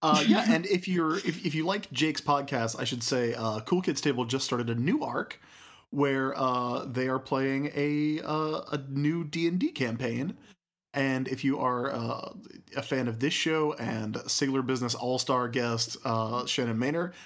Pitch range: 130-170 Hz